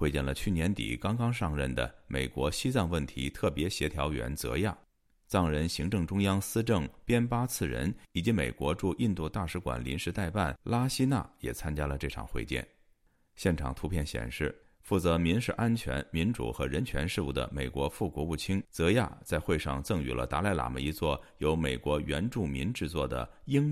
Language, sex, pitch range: Chinese, male, 70-100 Hz